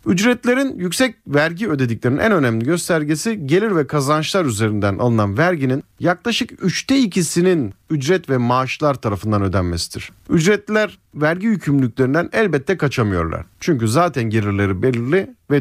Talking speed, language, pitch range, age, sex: 120 wpm, Turkish, 115-185 Hz, 40-59, male